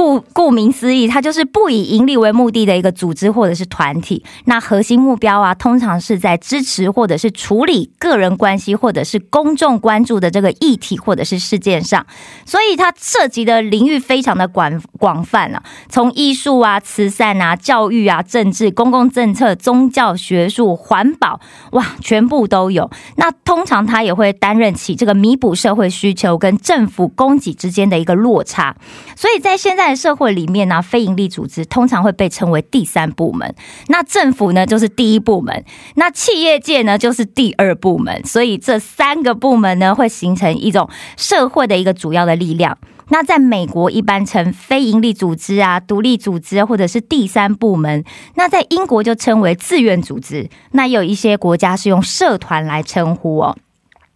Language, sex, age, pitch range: Korean, female, 20-39, 185-250 Hz